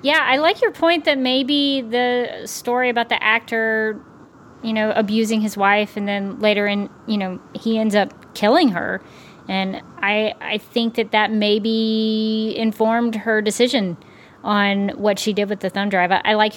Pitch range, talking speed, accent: 195-225 Hz, 180 wpm, American